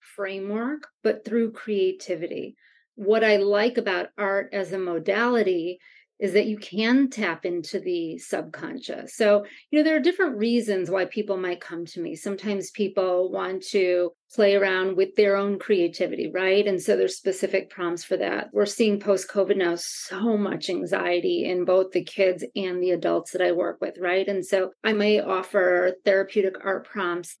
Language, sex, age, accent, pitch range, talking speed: English, female, 30-49, American, 190-225 Hz, 170 wpm